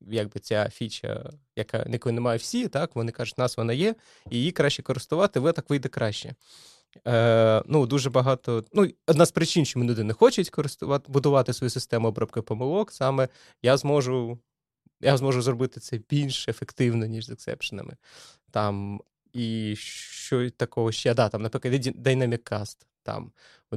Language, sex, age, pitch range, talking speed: Ukrainian, male, 20-39, 120-155 Hz, 155 wpm